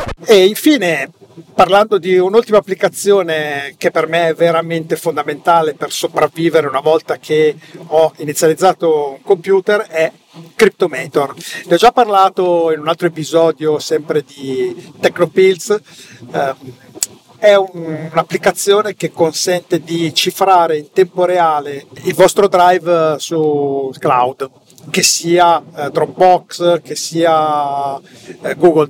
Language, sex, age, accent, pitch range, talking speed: Italian, male, 50-69, native, 155-185 Hz, 110 wpm